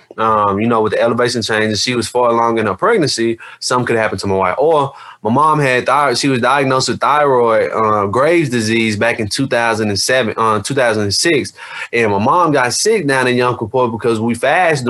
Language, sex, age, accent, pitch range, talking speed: English, male, 20-39, American, 115-155 Hz, 200 wpm